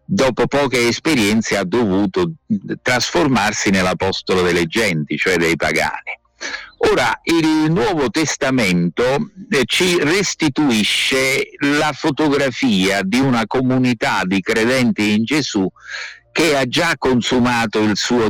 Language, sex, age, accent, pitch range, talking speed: Italian, male, 50-69, native, 100-145 Hz, 110 wpm